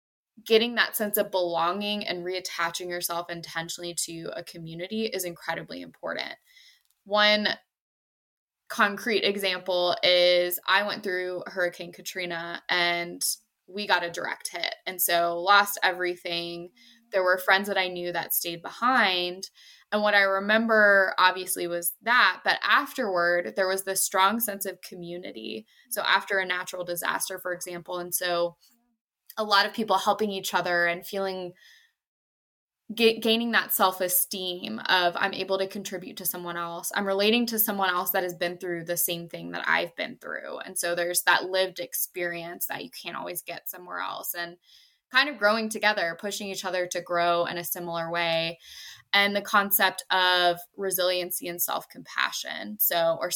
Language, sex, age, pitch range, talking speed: English, female, 20-39, 175-200 Hz, 160 wpm